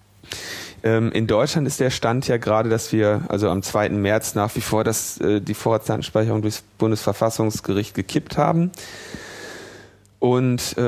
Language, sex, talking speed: German, male, 125 wpm